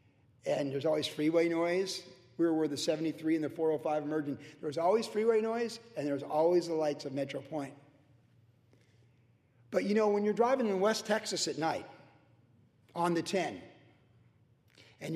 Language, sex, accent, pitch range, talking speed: English, male, American, 150-195 Hz, 165 wpm